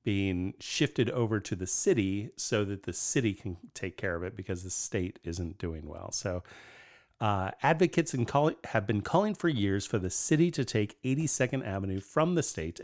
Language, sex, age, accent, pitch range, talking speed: English, male, 40-59, American, 100-135 Hz, 185 wpm